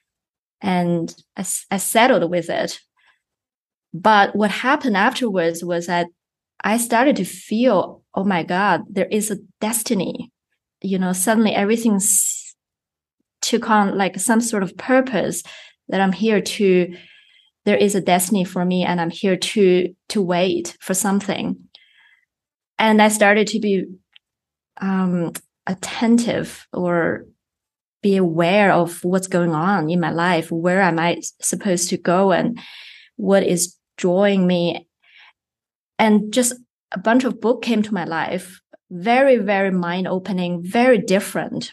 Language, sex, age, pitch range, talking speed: English, female, 20-39, 180-220 Hz, 140 wpm